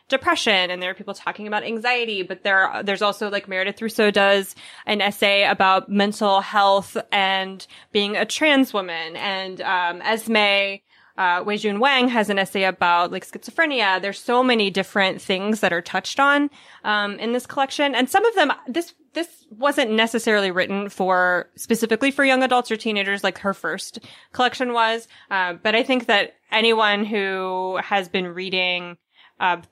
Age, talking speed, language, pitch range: 20-39, 170 wpm, English, 185-230 Hz